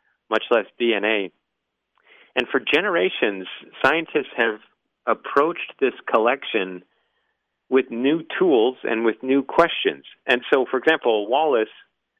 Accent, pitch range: American, 115-175 Hz